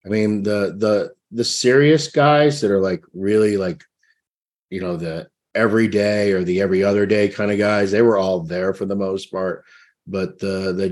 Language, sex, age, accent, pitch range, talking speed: English, male, 50-69, American, 95-120 Hz, 200 wpm